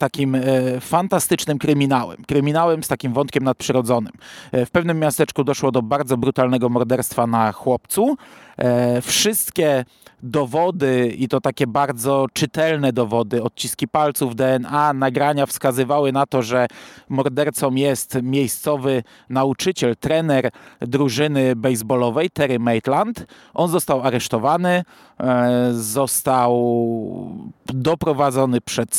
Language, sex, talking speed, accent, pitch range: Polish, male, 100 wpm, native, 125-155 Hz